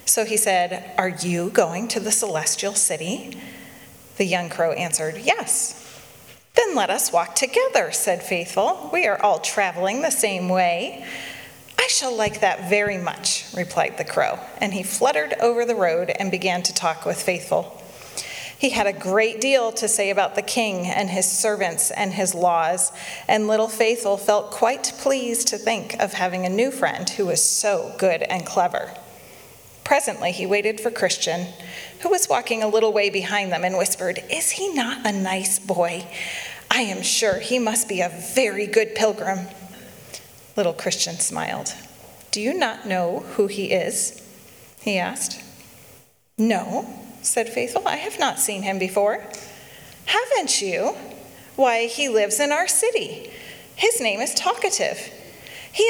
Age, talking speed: 30-49, 160 wpm